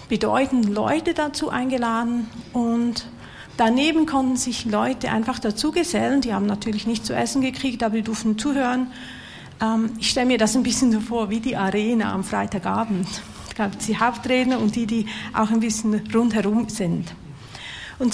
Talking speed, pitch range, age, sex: 165 wpm, 210-255 Hz, 50-69, female